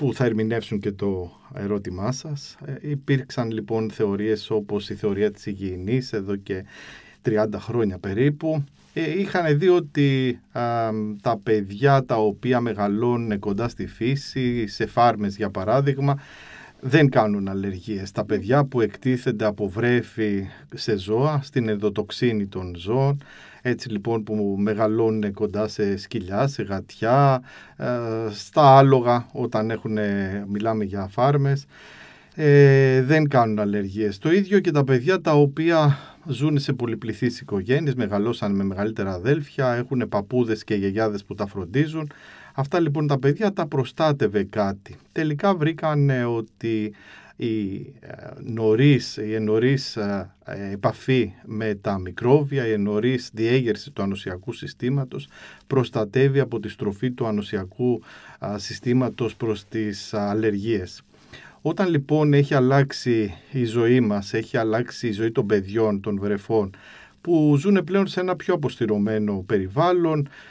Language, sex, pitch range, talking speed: Greek, male, 105-135 Hz, 125 wpm